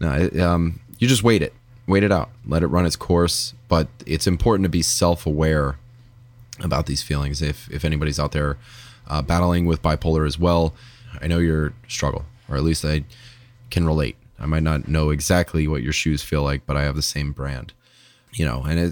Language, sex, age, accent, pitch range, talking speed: English, male, 20-39, American, 75-95 Hz, 200 wpm